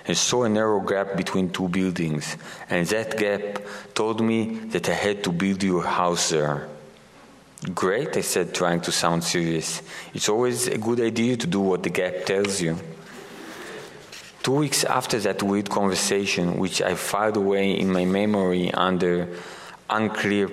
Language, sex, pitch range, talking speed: English, male, 90-110 Hz, 160 wpm